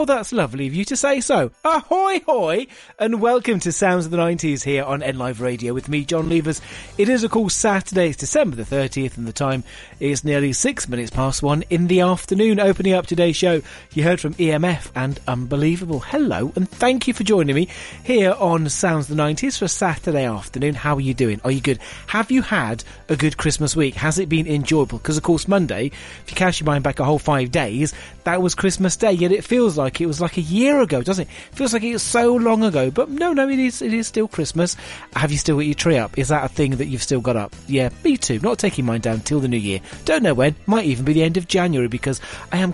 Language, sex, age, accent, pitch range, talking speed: English, male, 30-49, British, 135-190 Hz, 250 wpm